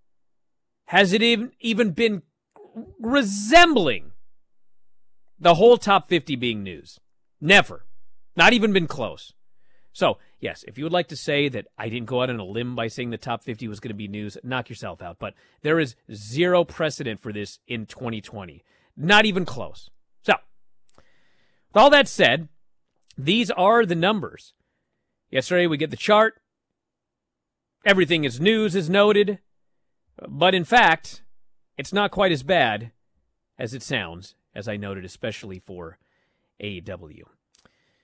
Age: 40-59